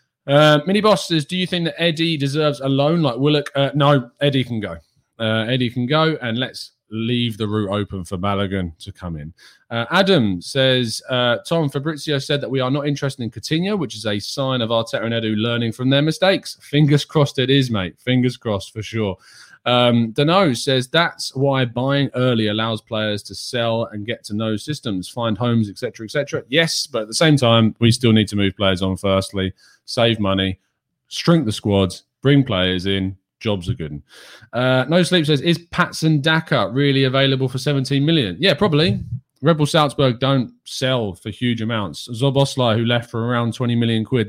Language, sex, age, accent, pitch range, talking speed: English, male, 30-49, British, 105-140 Hz, 190 wpm